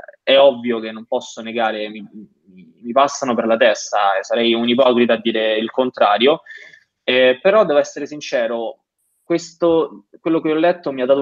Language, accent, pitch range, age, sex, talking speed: Italian, native, 115-155 Hz, 20-39, male, 180 wpm